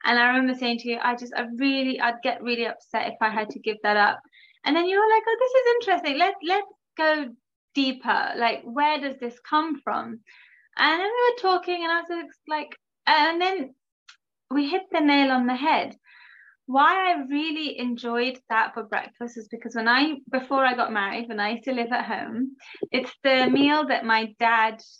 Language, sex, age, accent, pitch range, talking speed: English, female, 20-39, British, 235-310 Hz, 210 wpm